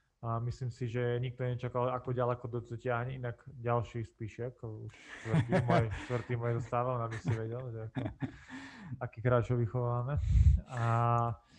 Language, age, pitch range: Slovak, 20-39, 115-125 Hz